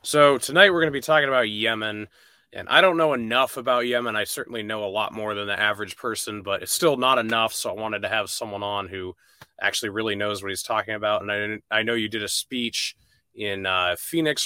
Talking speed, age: 240 wpm, 20-39